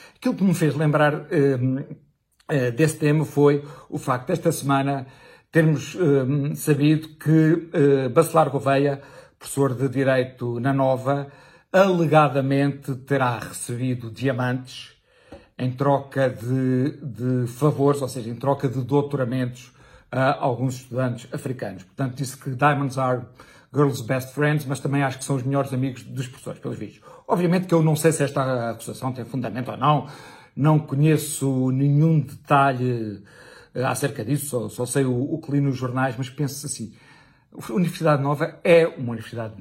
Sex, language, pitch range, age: male, Portuguese, 125-150 Hz, 60-79